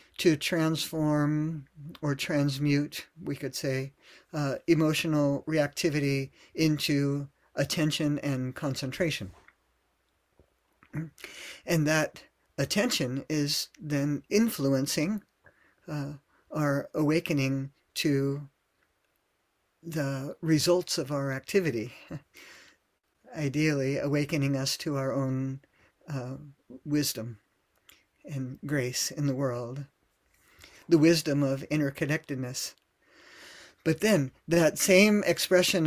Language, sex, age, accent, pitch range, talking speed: English, male, 50-69, American, 140-160 Hz, 85 wpm